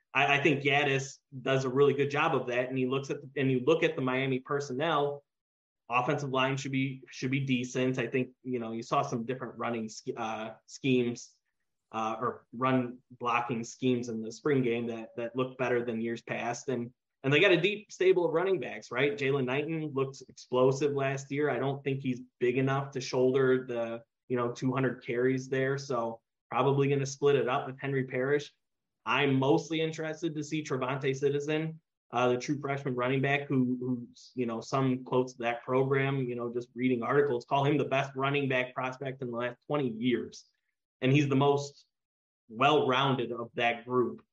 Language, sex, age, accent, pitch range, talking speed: English, male, 20-39, American, 120-140 Hz, 195 wpm